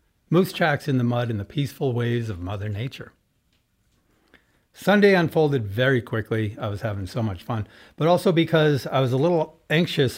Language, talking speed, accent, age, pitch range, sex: English, 175 wpm, American, 60-79, 110-145 Hz, male